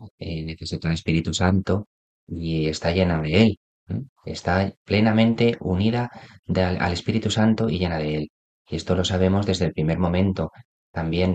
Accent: Spanish